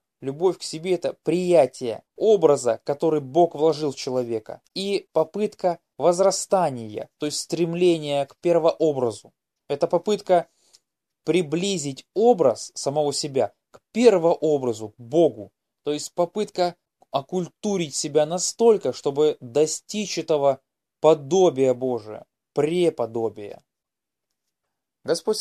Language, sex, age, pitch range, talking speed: Russian, male, 20-39, 140-175 Hz, 100 wpm